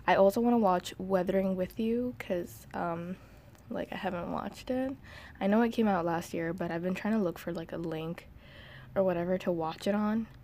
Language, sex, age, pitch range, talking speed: English, female, 20-39, 170-200 Hz, 220 wpm